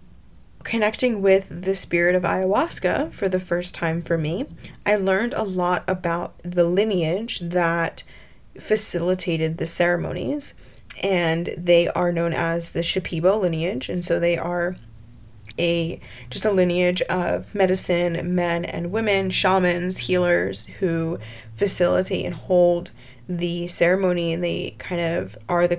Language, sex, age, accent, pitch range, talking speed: English, female, 10-29, American, 170-195 Hz, 135 wpm